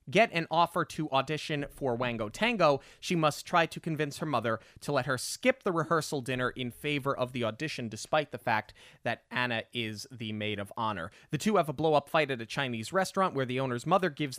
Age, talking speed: 30-49, 215 wpm